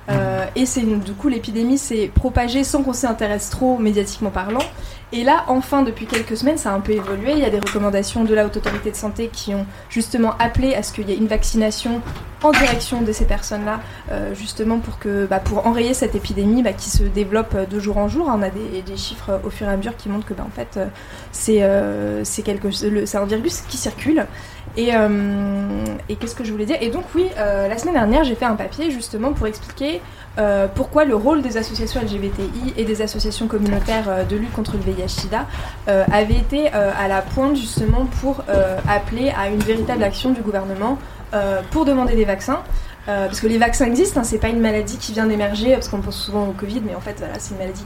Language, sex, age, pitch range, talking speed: French, female, 20-39, 200-250 Hz, 230 wpm